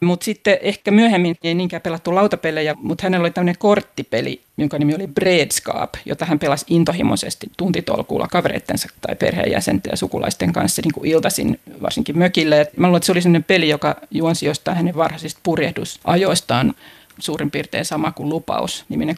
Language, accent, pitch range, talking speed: Finnish, native, 155-180 Hz, 155 wpm